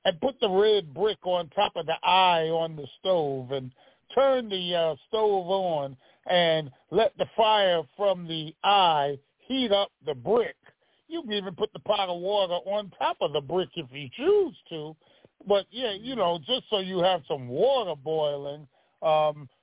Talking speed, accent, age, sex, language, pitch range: 180 wpm, American, 50-69, male, English, 150-205 Hz